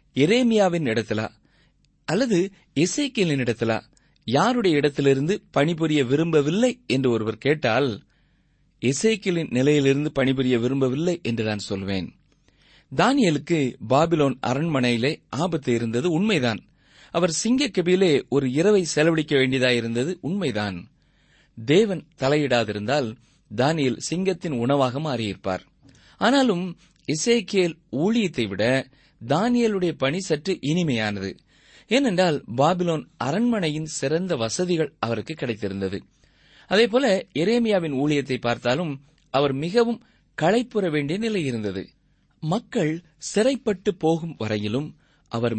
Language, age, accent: Tamil, 30-49, native